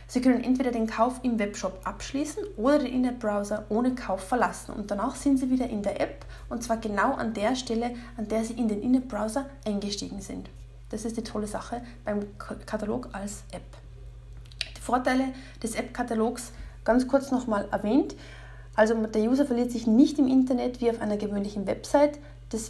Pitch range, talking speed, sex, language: 210-260 Hz, 175 wpm, female, German